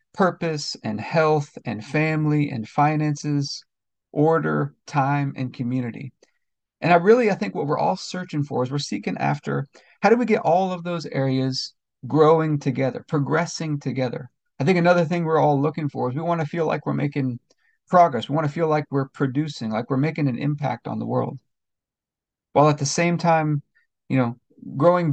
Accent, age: American, 40-59